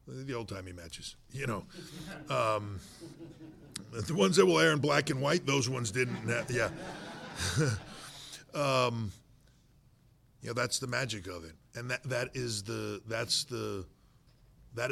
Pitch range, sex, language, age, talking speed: 100-125 Hz, male, English, 50-69, 140 wpm